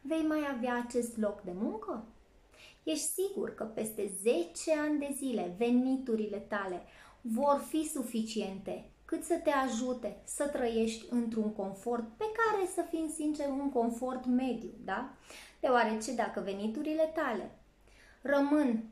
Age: 20-39